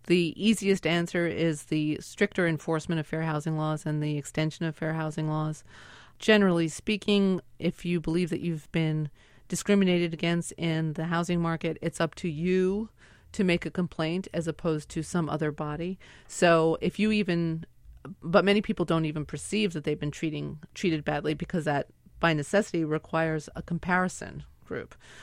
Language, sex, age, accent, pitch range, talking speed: English, female, 30-49, American, 155-180 Hz, 165 wpm